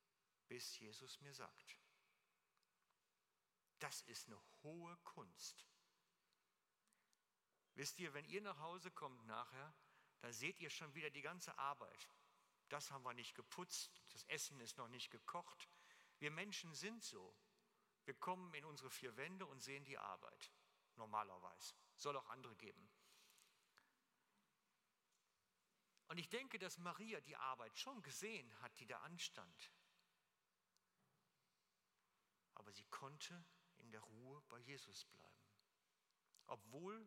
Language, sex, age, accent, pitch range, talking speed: German, male, 50-69, German, 130-175 Hz, 125 wpm